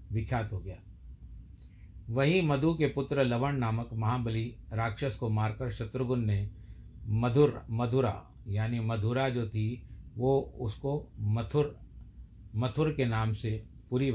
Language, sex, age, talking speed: Hindi, male, 50-69, 125 wpm